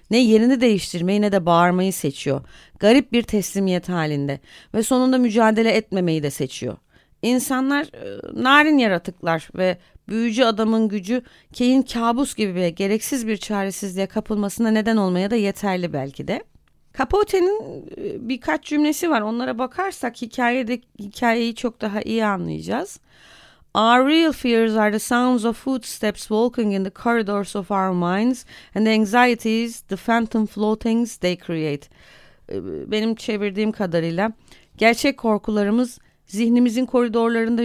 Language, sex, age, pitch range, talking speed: Turkish, female, 30-49, 190-240 Hz, 130 wpm